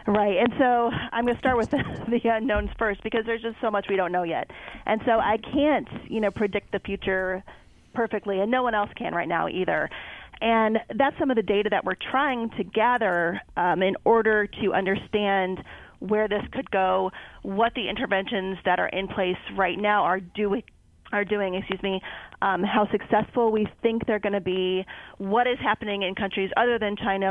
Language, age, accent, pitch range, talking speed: English, 30-49, American, 190-225 Hz, 200 wpm